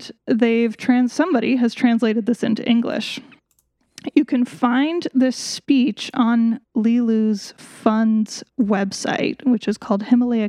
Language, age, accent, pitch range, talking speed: English, 10-29, American, 215-255 Hz, 120 wpm